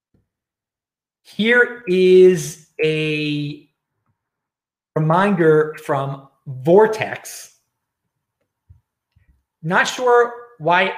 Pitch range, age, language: 135-190 Hz, 30-49, English